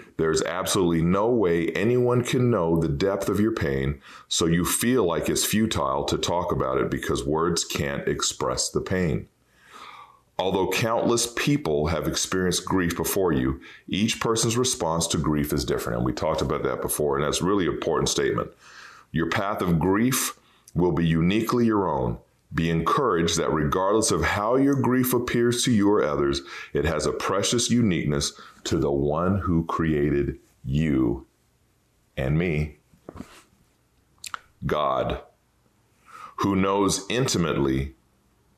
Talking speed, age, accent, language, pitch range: 145 wpm, 40-59, American, English, 75-115 Hz